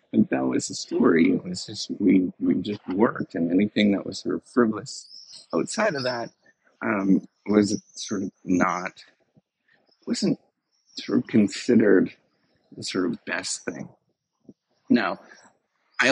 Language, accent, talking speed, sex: English, American, 140 wpm, male